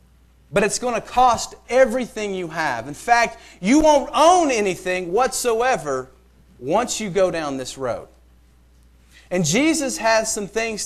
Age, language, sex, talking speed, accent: 40-59, English, male, 145 wpm, American